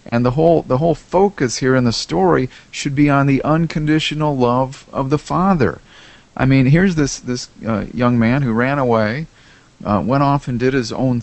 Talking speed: 200 wpm